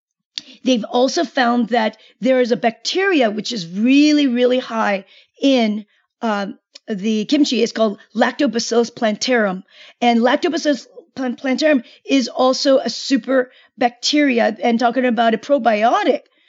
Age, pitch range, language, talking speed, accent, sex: 40-59, 240-295 Hz, English, 125 wpm, American, female